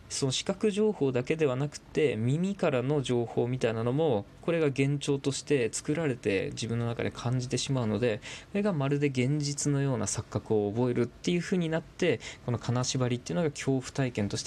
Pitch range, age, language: 120-150 Hz, 20-39, Japanese